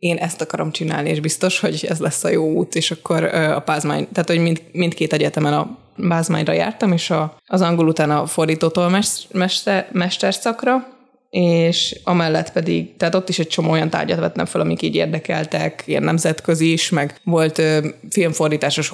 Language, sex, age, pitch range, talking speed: Hungarian, female, 20-39, 160-190 Hz, 180 wpm